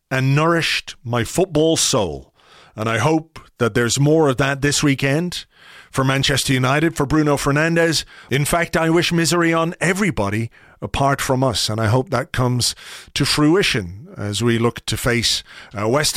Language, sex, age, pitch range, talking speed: English, male, 40-59, 130-165 Hz, 165 wpm